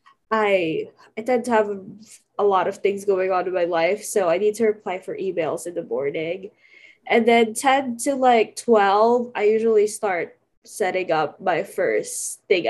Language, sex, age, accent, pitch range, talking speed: English, female, 20-39, Filipino, 195-255 Hz, 185 wpm